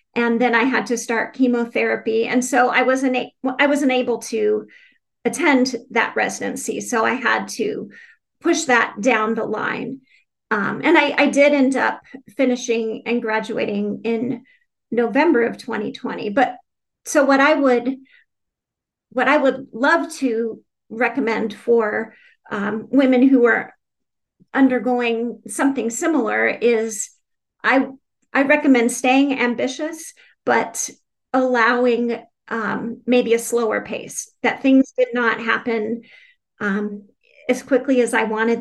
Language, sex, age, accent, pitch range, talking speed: English, female, 40-59, American, 225-265 Hz, 130 wpm